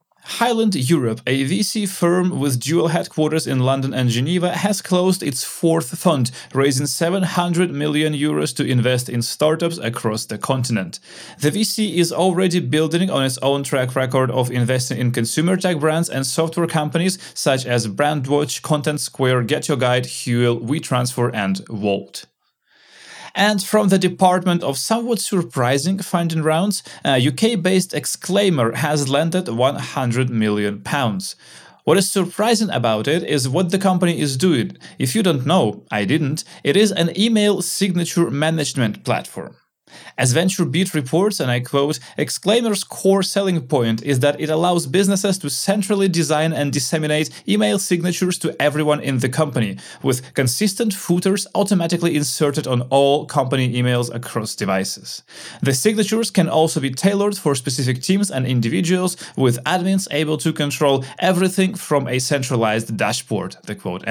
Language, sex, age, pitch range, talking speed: English, male, 30-49, 130-185 Hz, 150 wpm